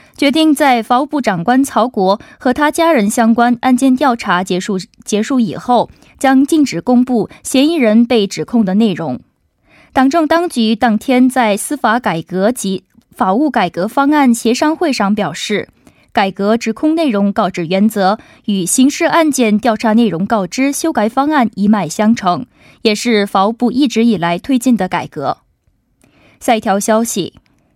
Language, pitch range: Korean, 210-280 Hz